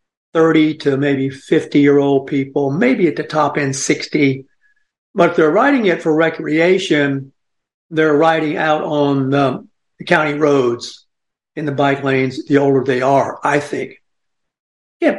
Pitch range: 140-175 Hz